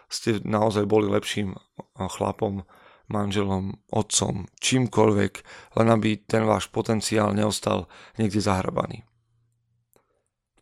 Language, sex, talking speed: Slovak, male, 95 wpm